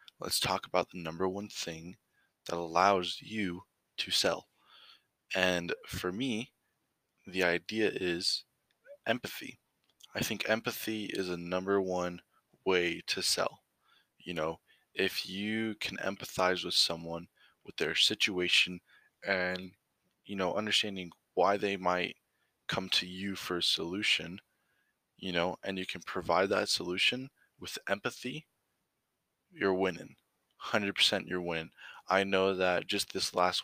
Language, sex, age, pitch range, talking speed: English, male, 20-39, 85-95 Hz, 130 wpm